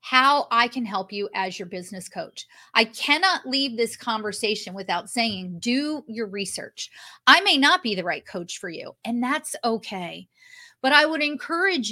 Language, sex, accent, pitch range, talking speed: English, female, American, 200-270 Hz, 175 wpm